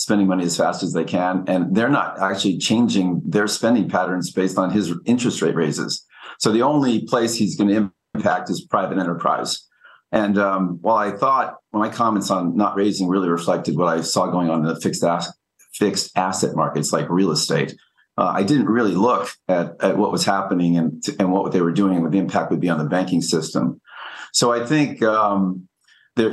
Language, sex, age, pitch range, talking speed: English, male, 40-59, 90-105 Hz, 205 wpm